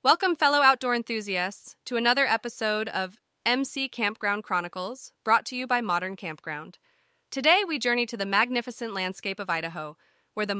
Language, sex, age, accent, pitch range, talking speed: English, female, 20-39, American, 185-245 Hz, 160 wpm